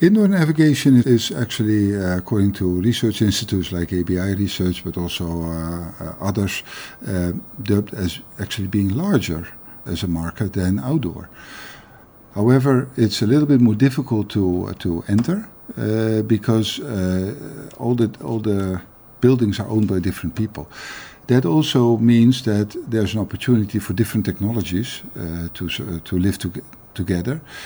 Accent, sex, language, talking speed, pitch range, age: Dutch, male, English, 150 wpm, 90-115 Hz, 50-69